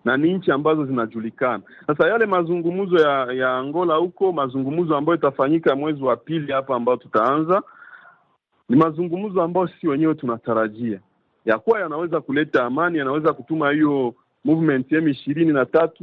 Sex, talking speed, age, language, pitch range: male, 140 wpm, 40-59, Swahili, 135-175 Hz